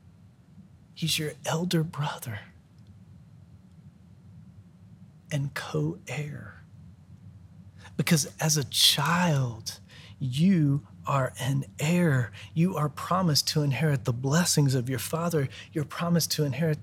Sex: male